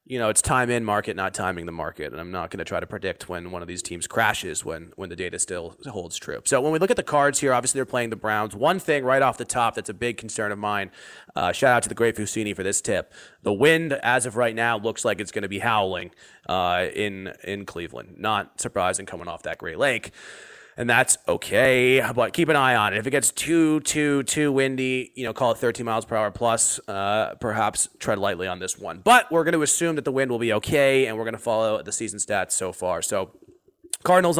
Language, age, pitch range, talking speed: English, 30-49, 105-135 Hz, 255 wpm